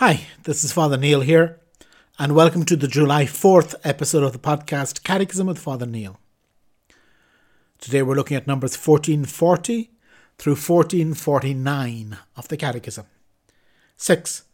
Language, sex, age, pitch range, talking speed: English, male, 60-79, 135-170 Hz, 130 wpm